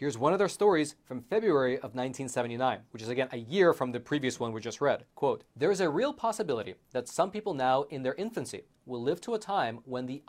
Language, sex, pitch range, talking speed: English, male, 125-150 Hz, 240 wpm